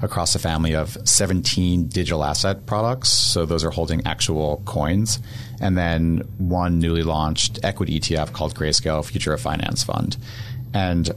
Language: English